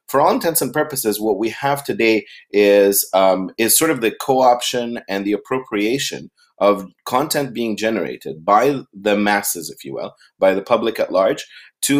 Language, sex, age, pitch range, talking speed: Spanish, male, 30-49, 100-125 Hz, 175 wpm